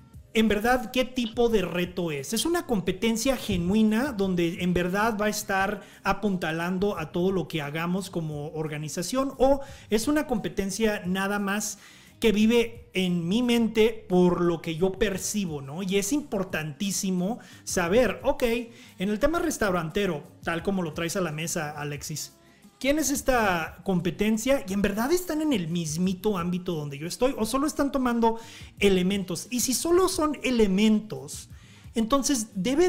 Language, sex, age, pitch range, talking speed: Spanish, male, 40-59, 180-235 Hz, 155 wpm